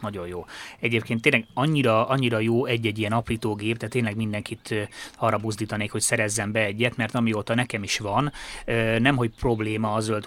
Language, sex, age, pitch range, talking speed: Hungarian, male, 20-39, 105-120 Hz, 165 wpm